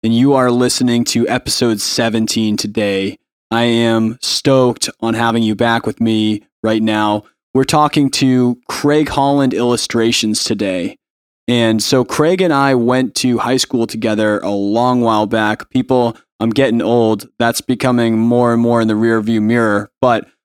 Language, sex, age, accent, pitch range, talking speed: English, male, 20-39, American, 110-125 Hz, 160 wpm